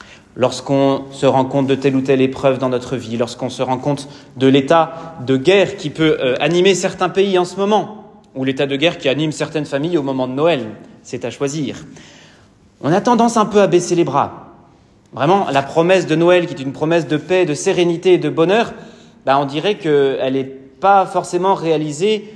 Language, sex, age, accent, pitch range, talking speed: French, male, 30-49, French, 135-185 Hz, 205 wpm